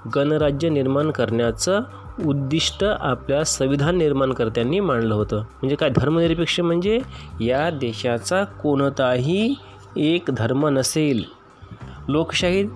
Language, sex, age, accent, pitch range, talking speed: Marathi, male, 30-49, native, 120-165 Hz, 95 wpm